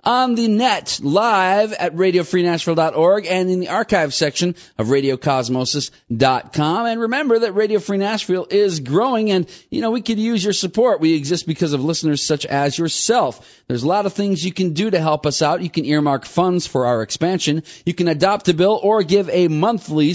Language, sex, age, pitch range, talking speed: English, male, 40-59, 135-185 Hz, 195 wpm